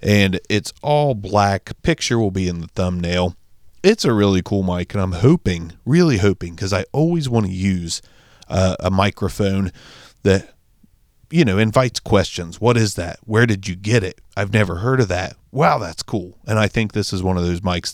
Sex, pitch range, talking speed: male, 95-120 Hz, 195 wpm